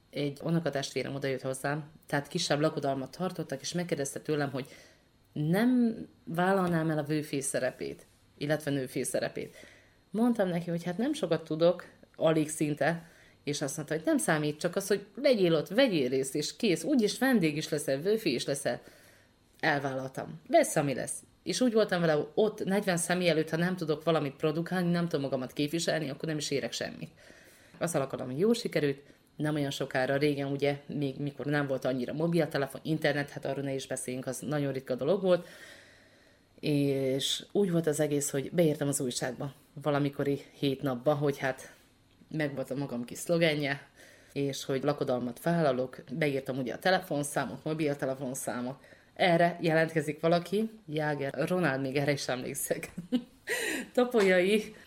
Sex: female